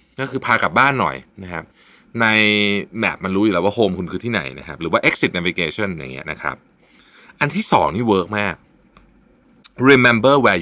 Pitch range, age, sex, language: 90-120 Hz, 20-39, male, Thai